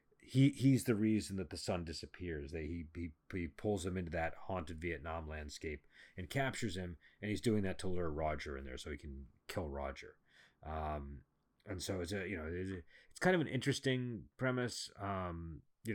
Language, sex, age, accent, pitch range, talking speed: English, male, 30-49, American, 80-105 Hz, 200 wpm